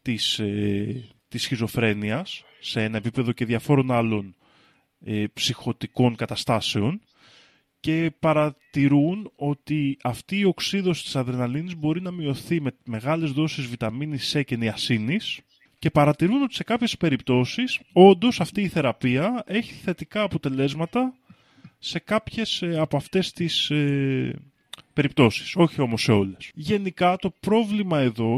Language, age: Greek, 20-39